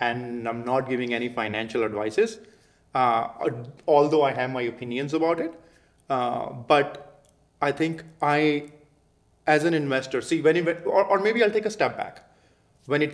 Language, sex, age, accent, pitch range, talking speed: English, male, 30-49, Indian, 120-150 Hz, 160 wpm